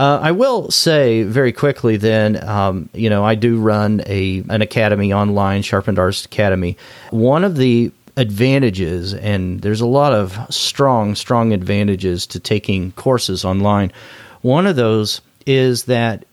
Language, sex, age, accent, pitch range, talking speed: English, male, 40-59, American, 105-130 Hz, 150 wpm